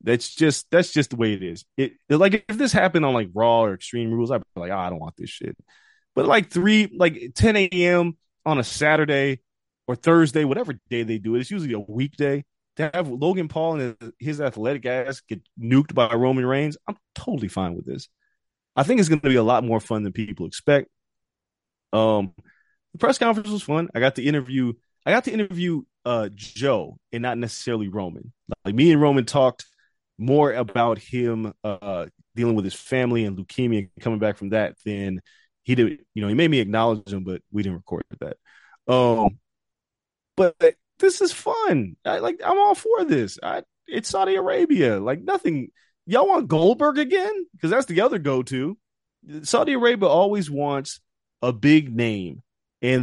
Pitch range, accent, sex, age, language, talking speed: 115-175 Hz, American, male, 20-39, English, 190 wpm